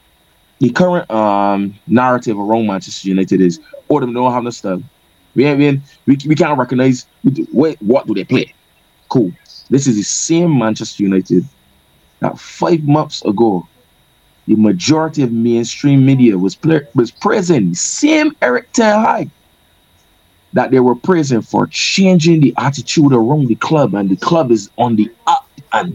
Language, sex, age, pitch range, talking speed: English, male, 20-39, 115-180 Hz, 160 wpm